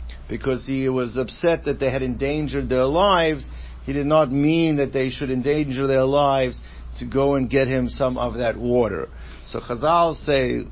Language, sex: English, male